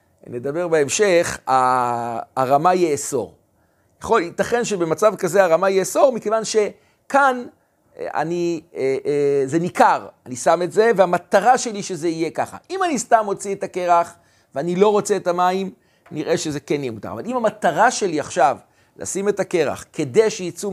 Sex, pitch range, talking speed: male, 150-215 Hz, 145 wpm